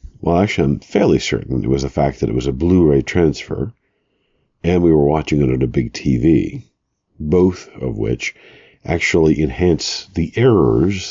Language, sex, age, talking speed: English, male, 50-69, 165 wpm